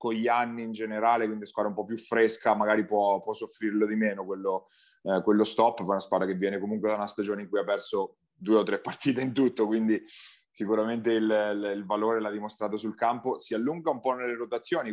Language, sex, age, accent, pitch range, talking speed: Italian, male, 30-49, native, 105-125 Hz, 225 wpm